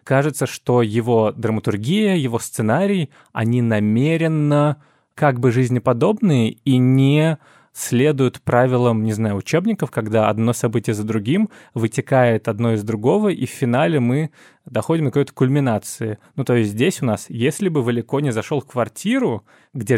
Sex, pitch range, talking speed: male, 115-150 Hz, 145 wpm